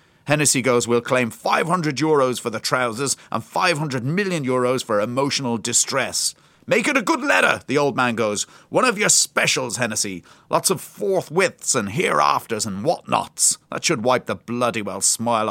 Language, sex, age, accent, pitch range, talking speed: English, male, 40-59, British, 120-180 Hz, 170 wpm